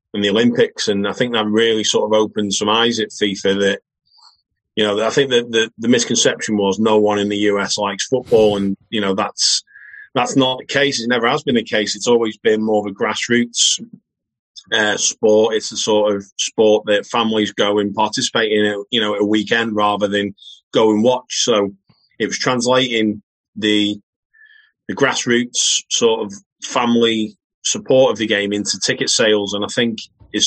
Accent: British